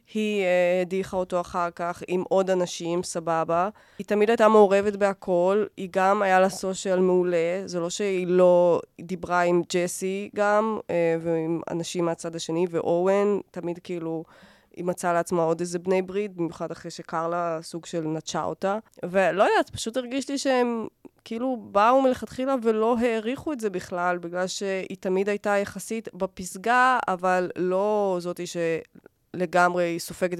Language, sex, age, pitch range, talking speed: Hebrew, female, 20-39, 170-200 Hz, 160 wpm